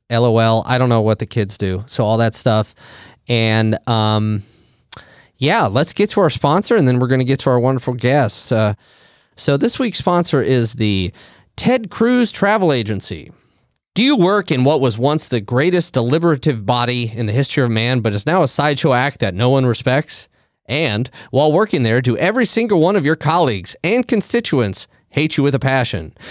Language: English